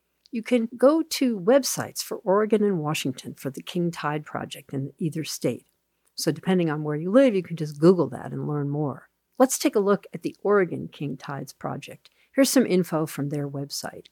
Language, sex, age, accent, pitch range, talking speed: English, female, 50-69, American, 150-230 Hz, 200 wpm